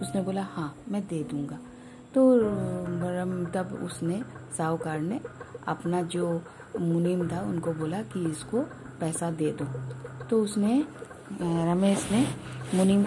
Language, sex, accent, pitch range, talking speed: Hindi, female, native, 165-215 Hz, 125 wpm